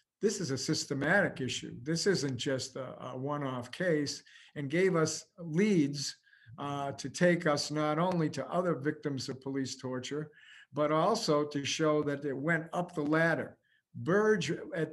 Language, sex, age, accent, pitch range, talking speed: English, male, 50-69, American, 145-170 Hz, 160 wpm